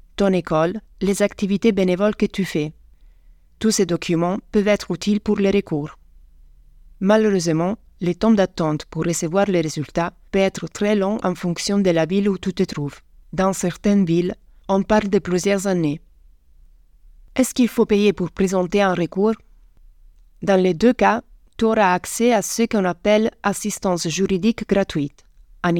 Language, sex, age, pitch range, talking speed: French, female, 30-49, 150-200 Hz, 165 wpm